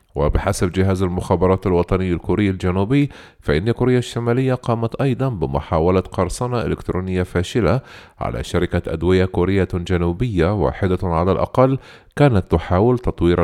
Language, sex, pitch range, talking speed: Arabic, male, 85-115 Hz, 115 wpm